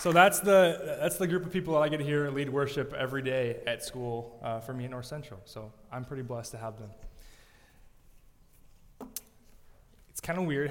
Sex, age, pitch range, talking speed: male, 20-39, 115-140 Hz, 200 wpm